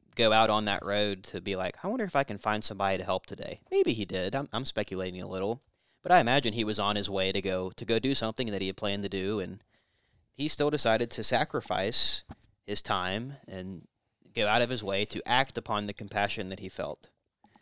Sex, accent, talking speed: male, American, 230 wpm